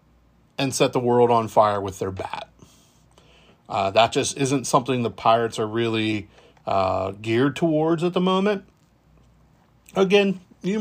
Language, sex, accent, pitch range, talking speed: English, male, American, 115-145 Hz, 145 wpm